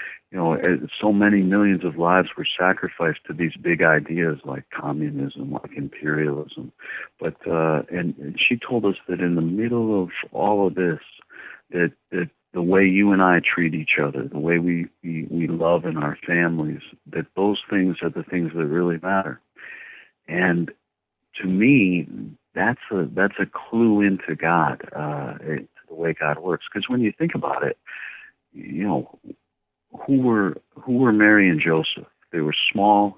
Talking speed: 170 wpm